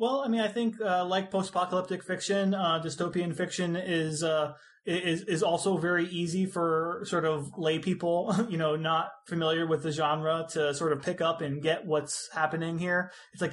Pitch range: 150-180 Hz